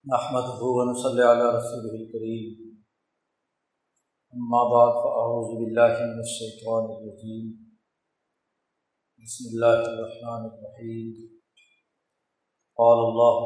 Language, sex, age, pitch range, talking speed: Urdu, male, 50-69, 115-125 Hz, 50 wpm